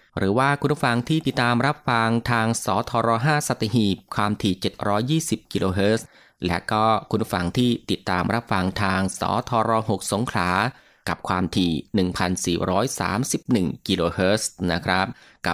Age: 20-39